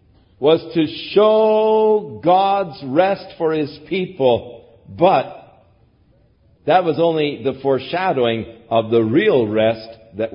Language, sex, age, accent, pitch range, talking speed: English, male, 50-69, American, 110-160 Hz, 110 wpm